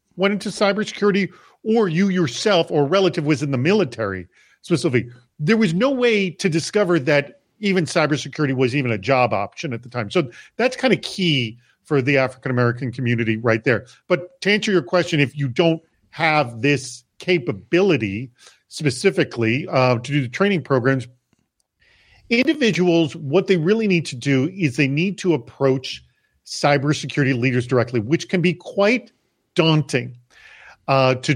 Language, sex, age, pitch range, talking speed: English, male, 40-59, 130-180 Hz, 155 wpm